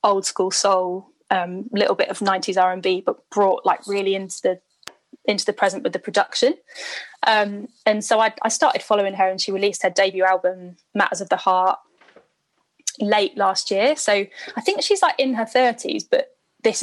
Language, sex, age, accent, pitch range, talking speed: English, female, 10-29, British, 185-230 Hz, 185 wpm